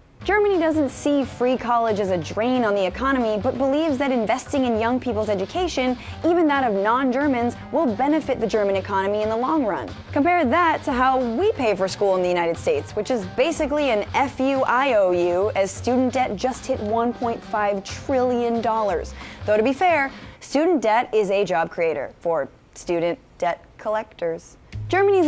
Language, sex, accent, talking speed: English, female, American, 170 wpm